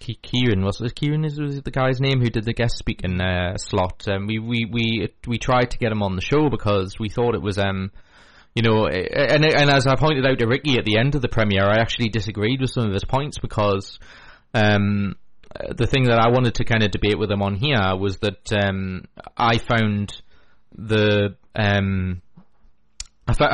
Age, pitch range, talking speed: 20-39, 105-125 Hz, 200 wpm